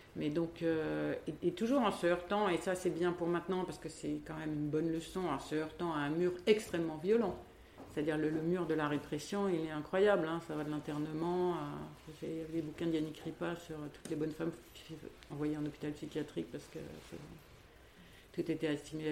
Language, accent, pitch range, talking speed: French, French, 150-175 Hz, 215 wpm